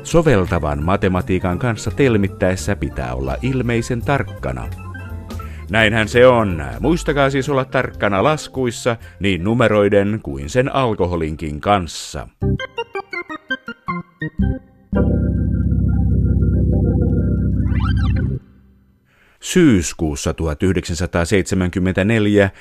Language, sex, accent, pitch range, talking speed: Finnish, male, native, 85-110 Hz, 65 wpm